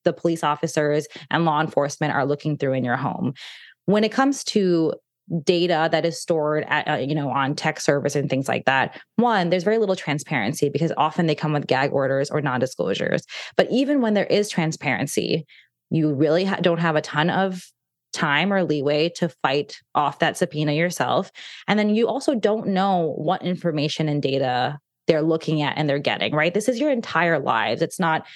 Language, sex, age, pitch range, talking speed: English, female, 20-39, 150-180 Hz, 190 wpm